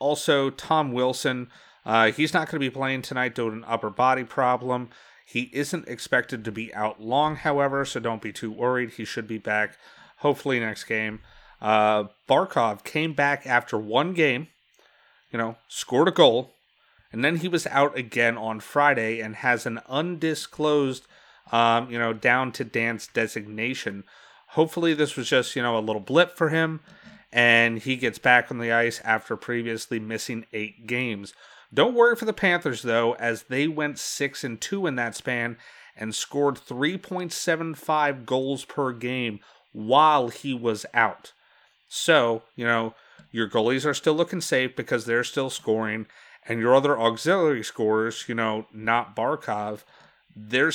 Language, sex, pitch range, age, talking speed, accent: English, male, 115-145 Hz, 30-49, 160 wpm, American